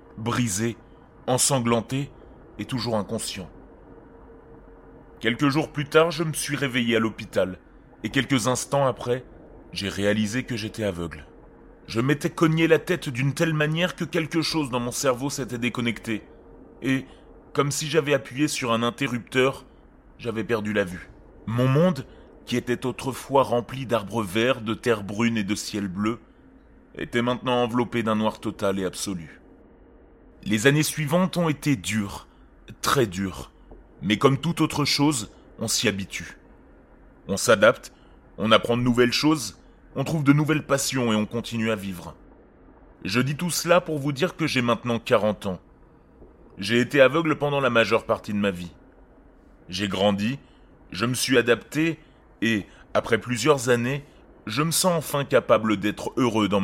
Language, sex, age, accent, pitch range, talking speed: French, male, 30-49, French, 105-140 Hz, 155 wpm